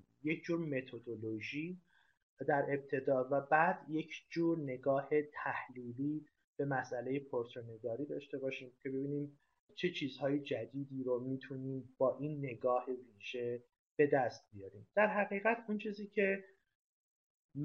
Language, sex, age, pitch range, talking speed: Persian, male, 30-49, 125-160 Hz, 120 wpm